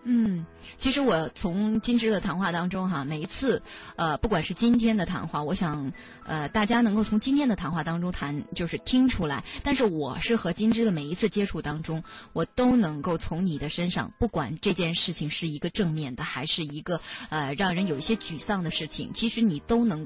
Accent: native